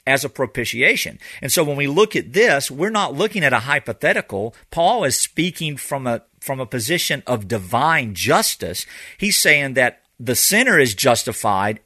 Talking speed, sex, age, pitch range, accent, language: 170 wpm, male, 50-69, 115-155 Hz, American, English